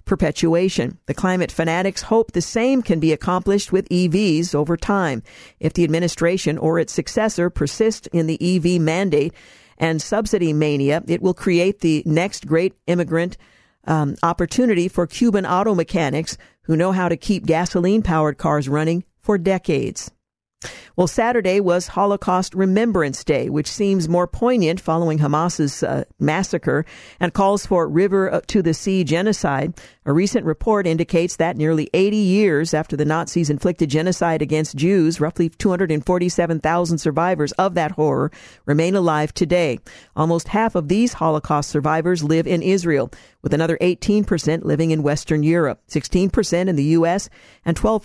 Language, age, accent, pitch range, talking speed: English, 50-69, American, 155-185 Hz, 150 wpm